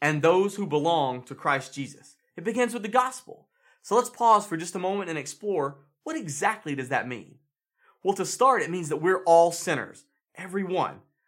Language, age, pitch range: English, 30-49, 155-230 Hz